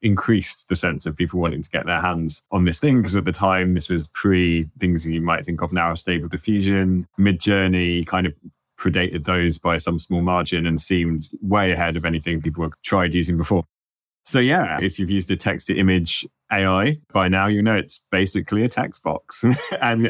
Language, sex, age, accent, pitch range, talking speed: English, male, 20-39, British, 90-105 Hz, 205 wpm